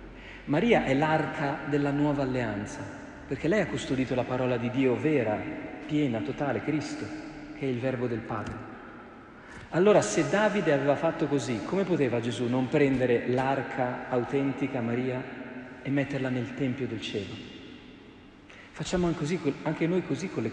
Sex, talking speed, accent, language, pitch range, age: male, 150 wpm, native, Italian, 115-150 Hz, 40-59